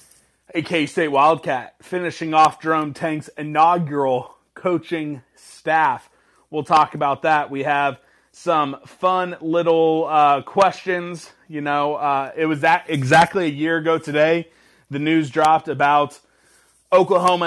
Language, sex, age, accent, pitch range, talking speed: English, male, 30-49, American, 135-165 Hz, 125 wpm